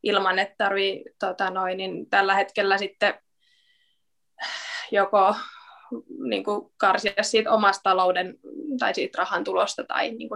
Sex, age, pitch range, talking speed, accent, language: female, 20-39, 195-230 Hz, 120 wpm, native, Finnish